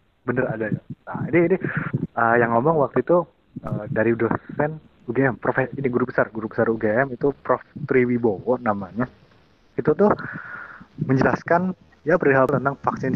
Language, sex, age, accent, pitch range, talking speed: Indonesian, male, 30-49, native, 115-155 Hz, 135 wpm